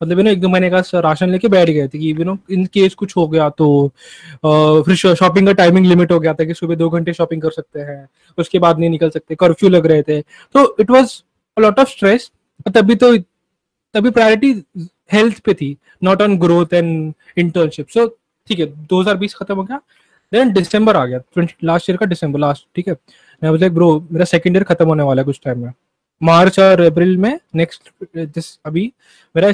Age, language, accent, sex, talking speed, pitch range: 20-39, Hindi, native, male, 180 wpm, 165-200 Hz